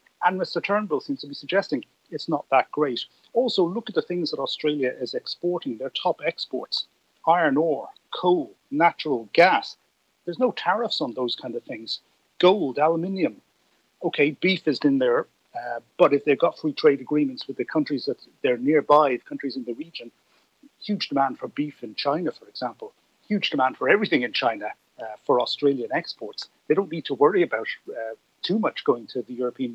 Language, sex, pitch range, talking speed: English, male, 130-180 Hz, 190 wpm